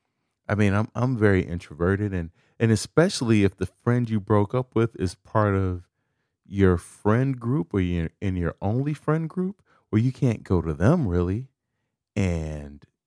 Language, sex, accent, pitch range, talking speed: English, male, American, 95-125 Hz, 170 wpm